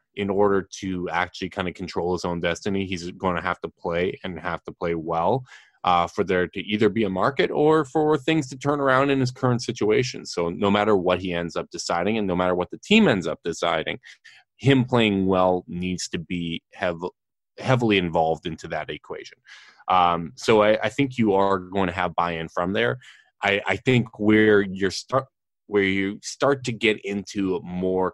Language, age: English, 20-39